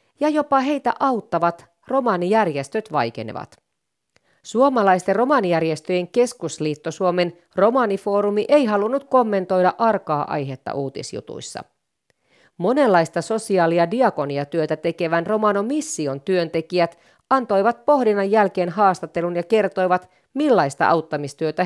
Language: Finnish